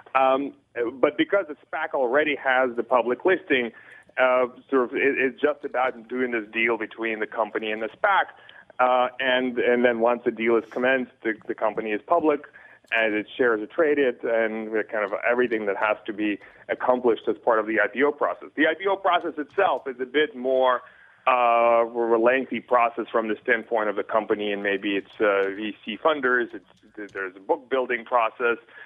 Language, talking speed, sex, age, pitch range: English, 190 wpm, male, 30-49, 110-150 Hz